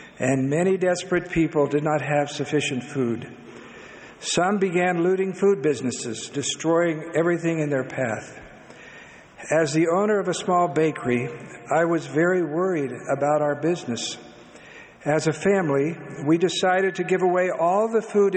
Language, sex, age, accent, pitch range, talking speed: English, male, 60-79, American, 145-185 Hz, 145 wpm